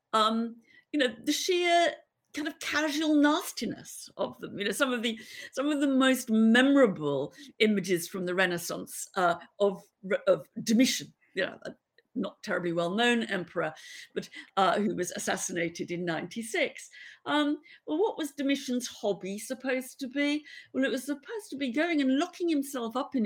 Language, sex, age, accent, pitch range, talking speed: English, female, 50-69, British, 205-290 Hz, 170 wpm